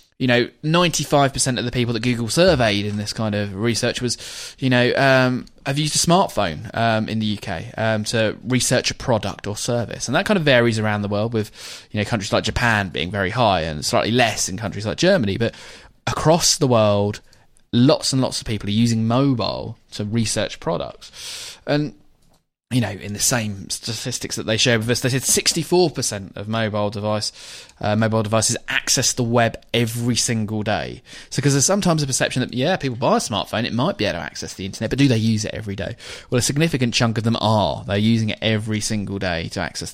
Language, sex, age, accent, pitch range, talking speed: English, male, 20-39, British, 105-130 Hz, 210 wpm